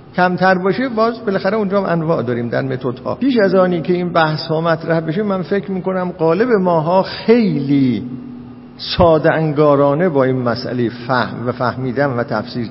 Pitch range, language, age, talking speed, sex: 135-200 Hz, Persian, 50-69, 160 wpm, male